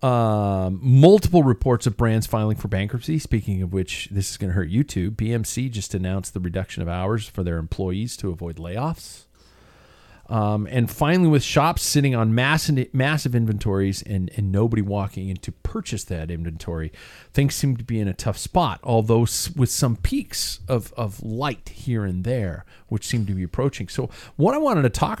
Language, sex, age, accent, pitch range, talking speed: English, male, 40-59, American, 100-130 Hz, 190 wpm